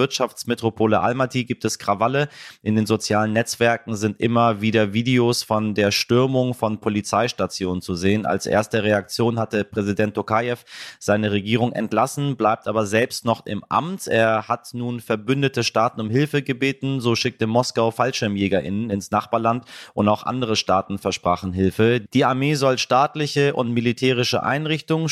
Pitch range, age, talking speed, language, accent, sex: 105-125 Hz, 30-49, 150 wpm, German, German, male